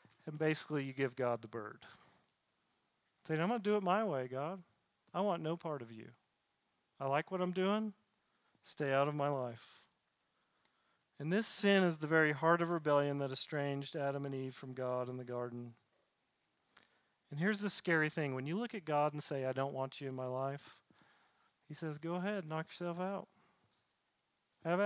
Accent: American